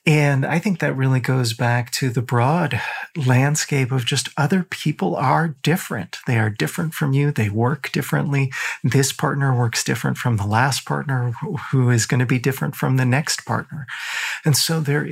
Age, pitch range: 40-59, 115-145 Hz